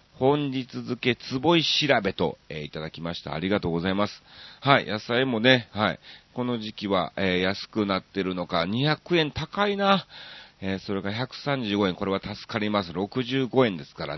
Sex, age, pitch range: male, 40-59, 95-145 Hz